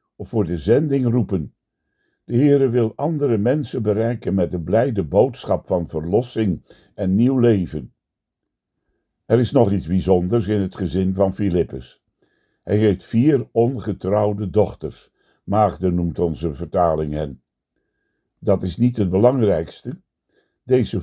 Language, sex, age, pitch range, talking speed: Dutch, male, 60-79, 90-115 Hz, 130 wpm